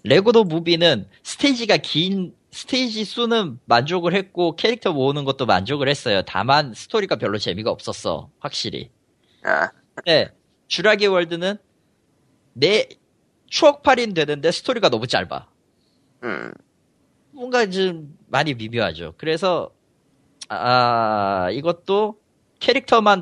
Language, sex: Korean, male